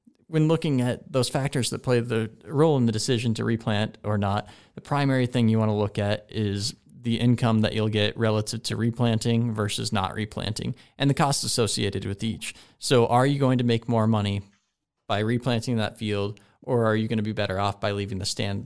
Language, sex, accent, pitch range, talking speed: English, male, American, 110-130 Hz, 210 wpm